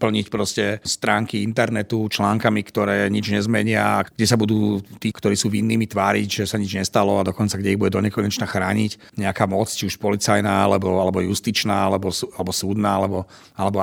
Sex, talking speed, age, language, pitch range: male, 170 wpm, 40-59, Slovak, 105-135 Hz